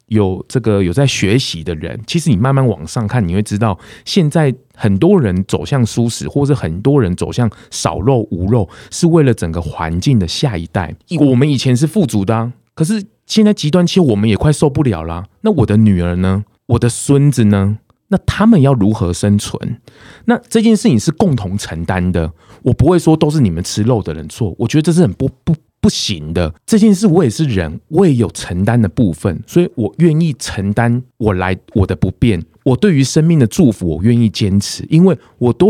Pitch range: 105-160 Hz